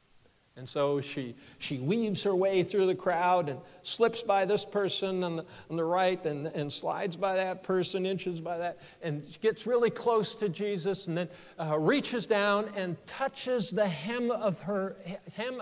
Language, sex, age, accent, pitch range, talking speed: English, male, 60-79, American, 150-205 Hz, 180 wpm